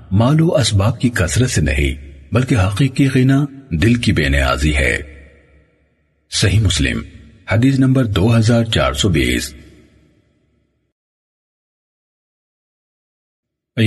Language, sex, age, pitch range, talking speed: Urdu, male, 50-69, 80-120 Hz, 85 wpm